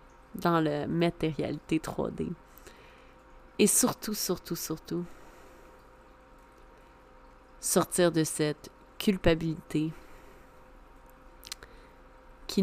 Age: 30-49